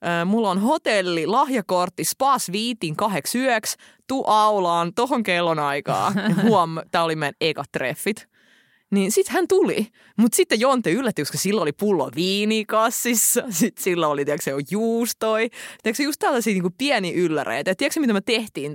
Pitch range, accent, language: 165-235 Hz, native, Finnish